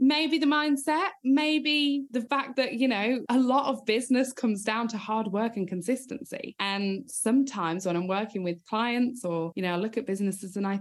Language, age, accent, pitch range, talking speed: English, 20-39, British, 180-235 Hz, 200 wpm